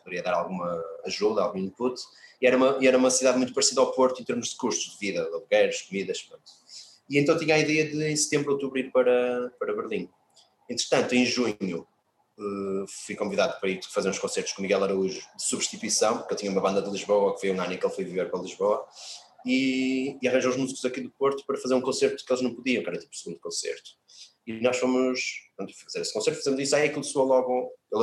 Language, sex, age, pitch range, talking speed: Portuguese, male, 20-39, 115-150 Hz, 230 wpm